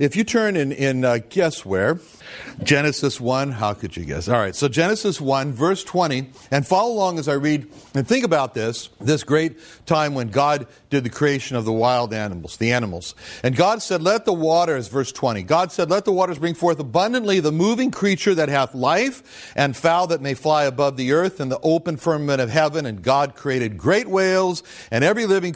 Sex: male